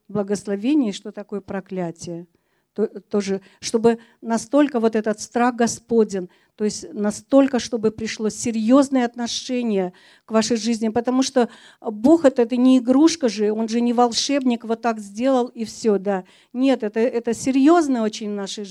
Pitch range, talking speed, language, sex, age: 200-245 Hz, 145 wpm, Russian, female, 50-69